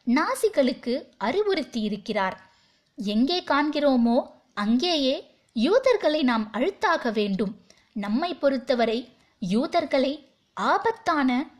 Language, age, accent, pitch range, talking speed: Tamil, 20-39, native, 220-290 Hz, 60 wpm